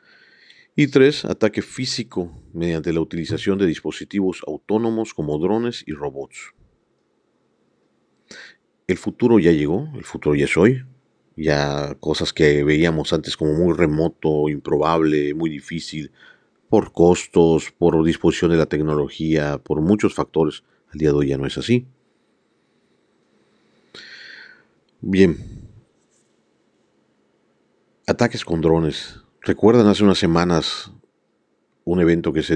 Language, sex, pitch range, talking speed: Spanish, male, 80-105 Hz, 120 wpm